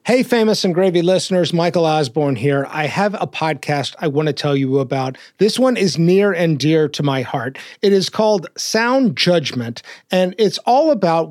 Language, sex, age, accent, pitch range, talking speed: English, male, 30-49, American, 155-205 Hz, 190 wpm